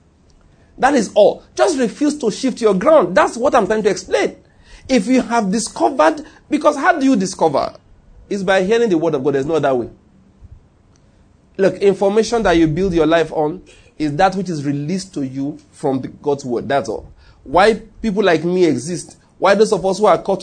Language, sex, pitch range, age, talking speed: English, male, 155-215 Hz, 40-59, 195 wpm